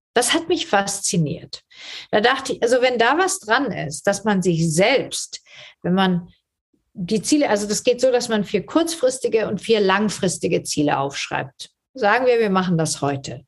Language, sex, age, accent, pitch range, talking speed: German, female, 50-69, German, 175-245 Hz, 180 wpm